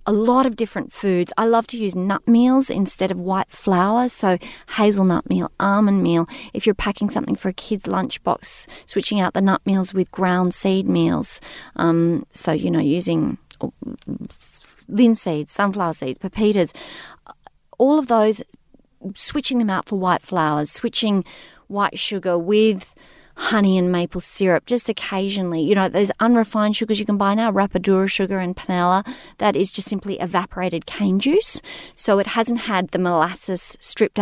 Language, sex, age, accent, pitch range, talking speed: English, female, 30-49, Australian, 190-235 Hz, 160 wpm